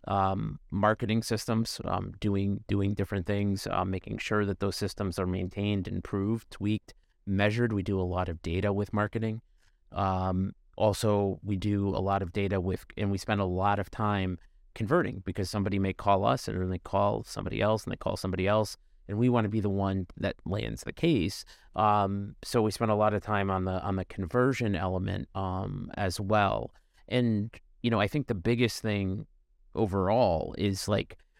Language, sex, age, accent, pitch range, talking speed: English, male, 30-49, American, 95-110 Hz, 190 wpm